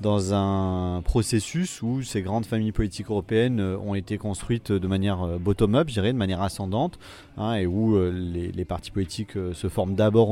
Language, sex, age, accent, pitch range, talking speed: French, male, 30-49, French, 95-120 Hz, 175 wpm